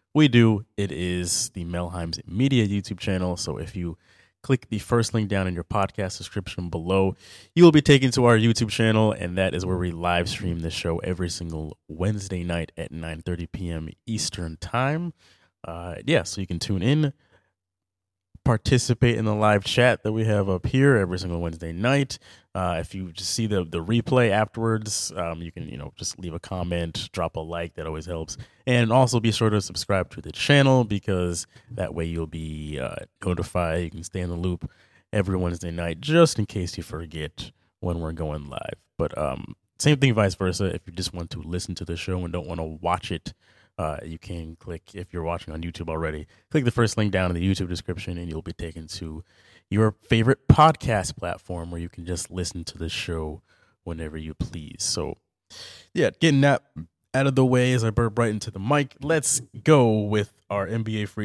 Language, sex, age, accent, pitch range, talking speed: English, male, 20-39, American, 85-115 Hz, 205 wpm